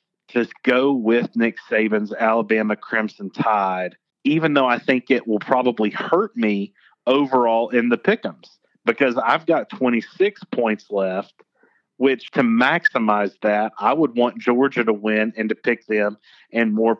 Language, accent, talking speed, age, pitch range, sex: English, American, 155 wpm, 40-59, 105-125 Hz, male